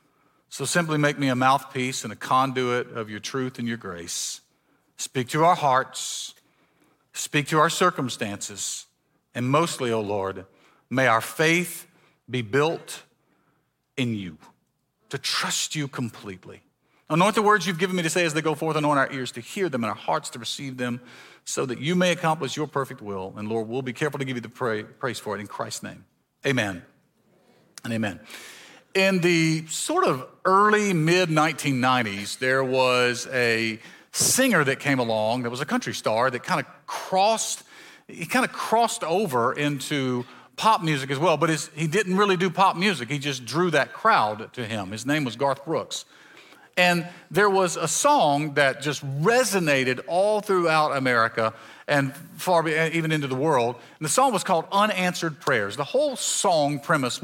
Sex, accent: male, American